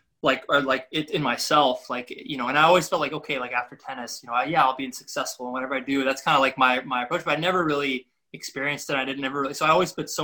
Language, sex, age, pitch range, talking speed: English, male, 20-39, 125-145 Hz, 295 wpm